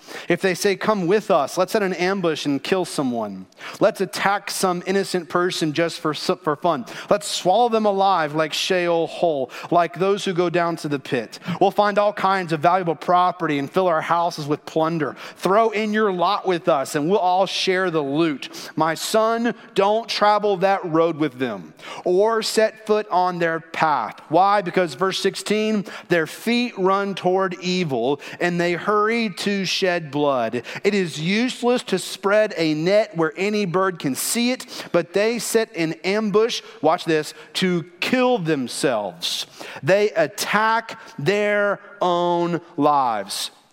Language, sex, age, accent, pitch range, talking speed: English, male, 40-59, American, 170-210 Hz, 165 wpm